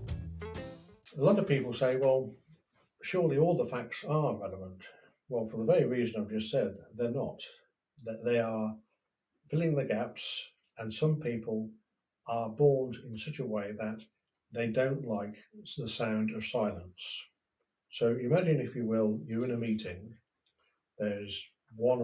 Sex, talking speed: male, 150 wpm